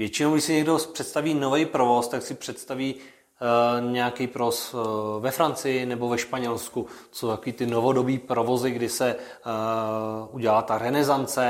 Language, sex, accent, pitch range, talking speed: Czech, male, native, 115-130 Hz, 160 wpm